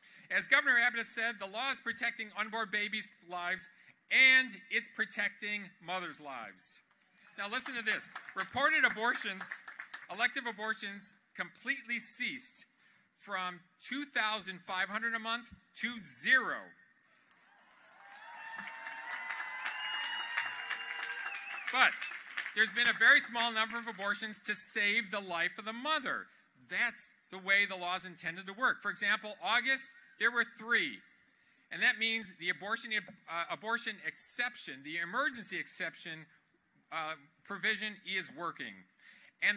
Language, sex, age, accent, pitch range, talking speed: English, male, 40-59, American, 190-235 Hz, 120 wpm